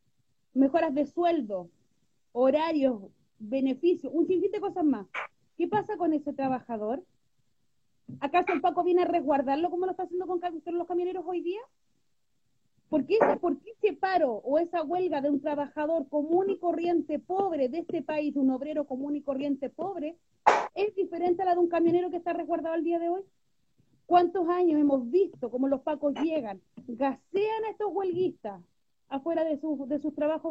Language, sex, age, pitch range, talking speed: Spanish, female, 30-49, 285-355 Hz, 170 wpm